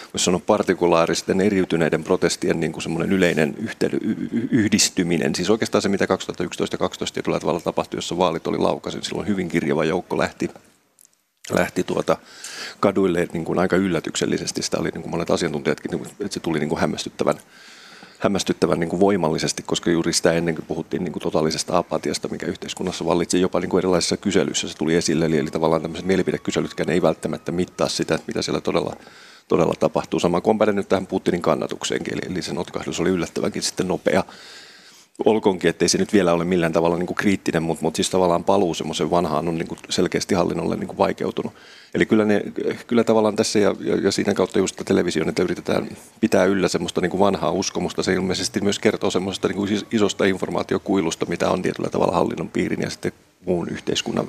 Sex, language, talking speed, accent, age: male, Finnish, 170 wpm, native, 30-49